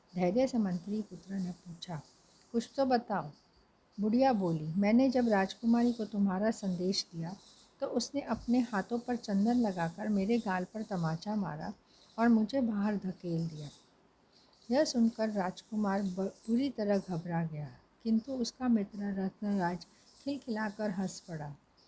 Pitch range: 185-240 Hz